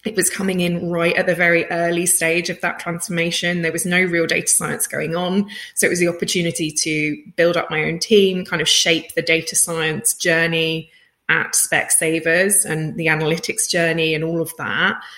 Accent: British